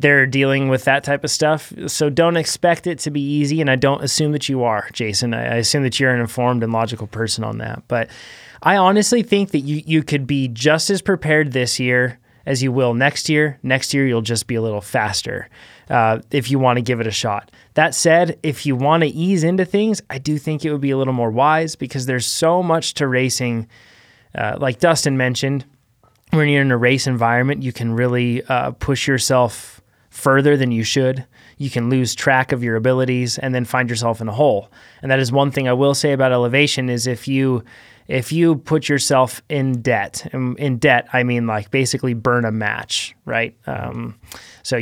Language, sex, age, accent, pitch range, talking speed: English, male, 20-39, American, 120-145 Hz, 215 wpm